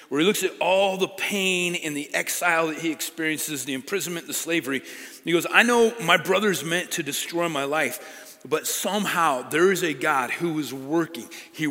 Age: 40-59